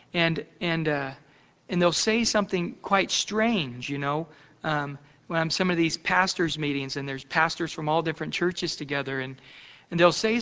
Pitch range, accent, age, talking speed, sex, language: 155-210 Hz, American, 40-59, 185 wpm, male, English